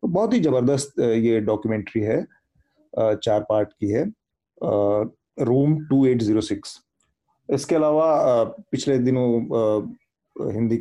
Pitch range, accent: 115-135 Hz, native